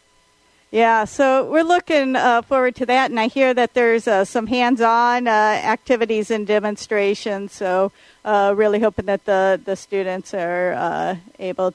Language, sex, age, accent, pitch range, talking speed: English, female, 50-69, American, 195-235 Hz, 160 wpm